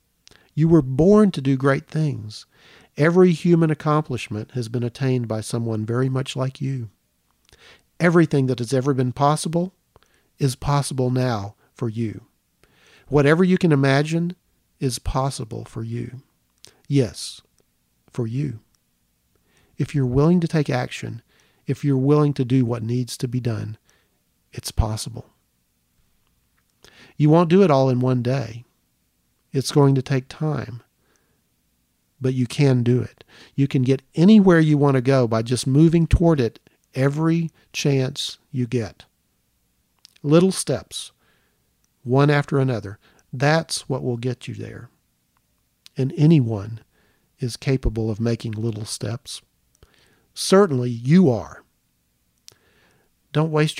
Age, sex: 40-59, male